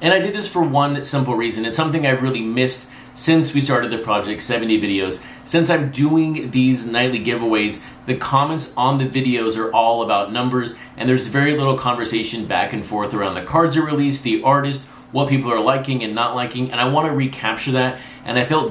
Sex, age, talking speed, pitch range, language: male, 30-49, 210 wpm, 115-140 Hz, English